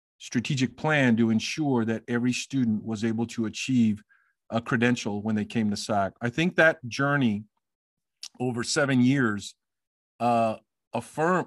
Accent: American